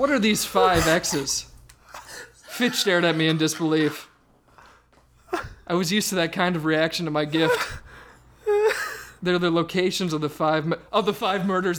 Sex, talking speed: male, 165 wpm